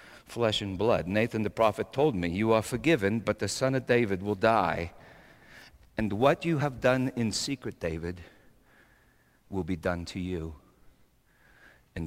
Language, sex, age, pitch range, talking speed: English, male, 50-69, 95-155 Hz, 160 wpm